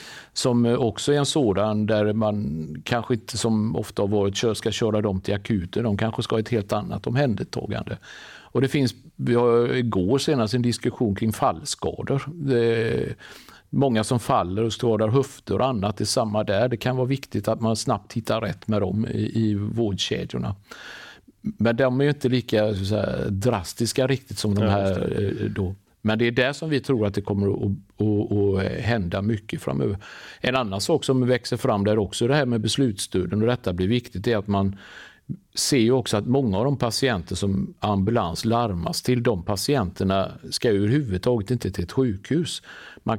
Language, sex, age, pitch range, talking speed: Swedish, male, 50-69, 100-125 Hz, 185 wpm